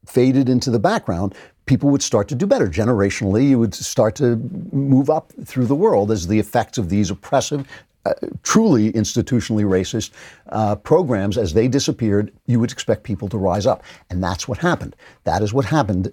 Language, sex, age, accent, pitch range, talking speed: English, male, 60-79, American, 100-135 Hz, 185 wpm